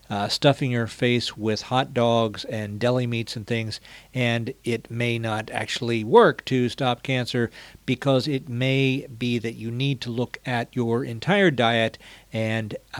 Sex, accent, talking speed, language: male, American, 160 wpm, English